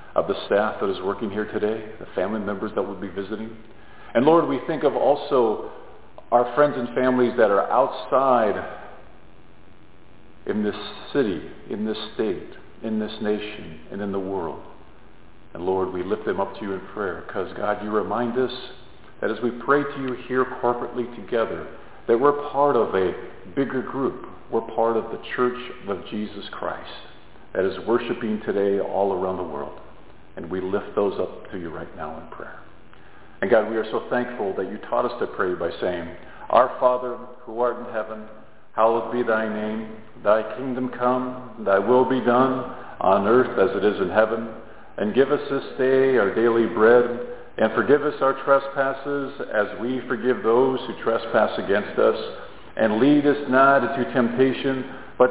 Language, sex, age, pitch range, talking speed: English, male, 50-69, 105-130 Hz, 180 wpm